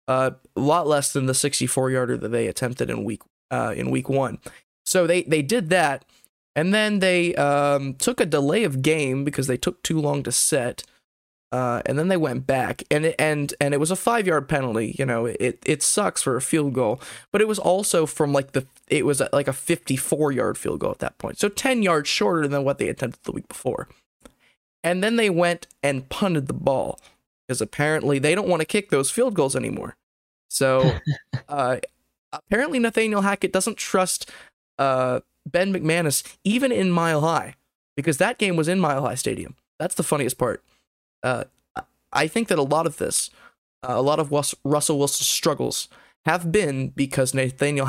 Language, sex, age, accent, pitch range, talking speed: English, male, 20-39, American, 135-175 Hz, 190 wpm